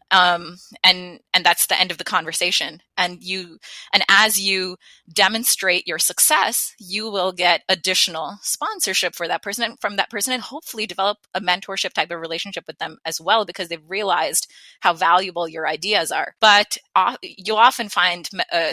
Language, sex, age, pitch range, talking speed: English, female, 20-39, 170-200 Hz, 175 wpm